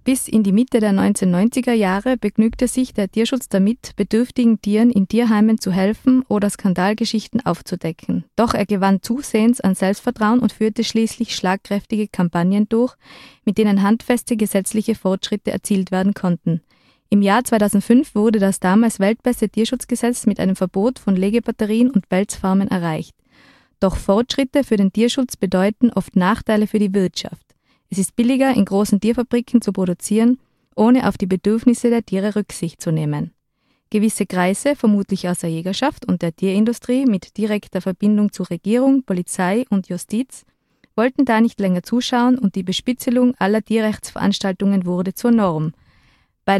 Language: German